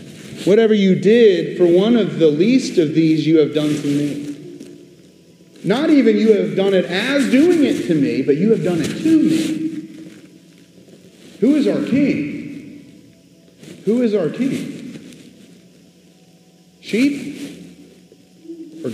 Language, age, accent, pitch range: English, 40-59, American, 160-270 Hz